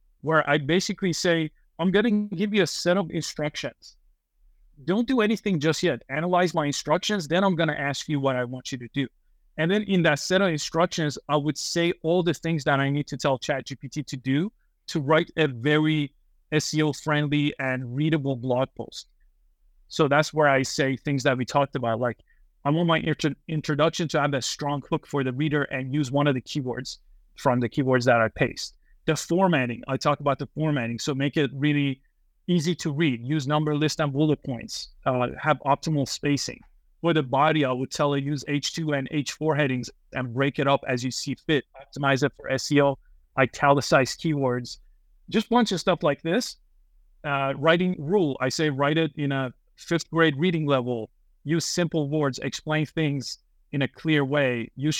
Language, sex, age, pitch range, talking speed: English, male, 30-49, 135-160 Hz, 195 wpm